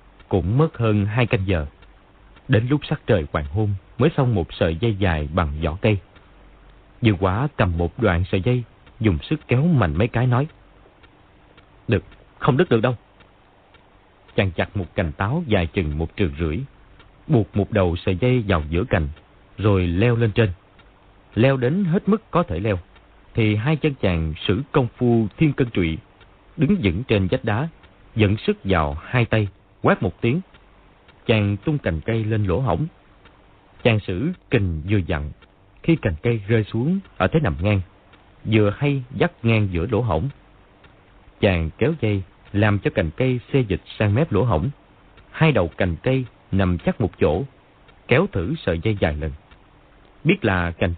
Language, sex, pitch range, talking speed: Vietnamese, male, 95-120 Hz, 175 wpm